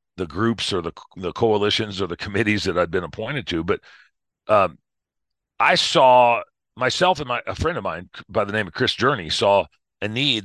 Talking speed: 195 wpm